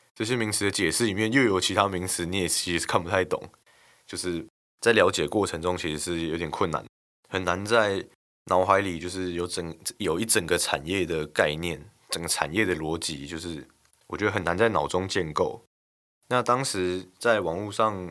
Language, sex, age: Chinese, male, 20-39